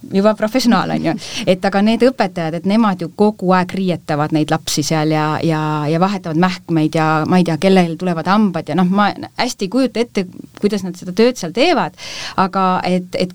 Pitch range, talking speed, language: 155-195 Hz, 195 wpm, English